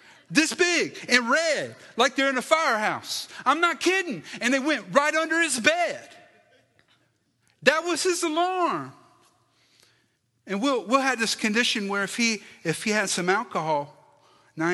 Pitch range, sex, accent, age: 180-235 Hz, male, American, 40-59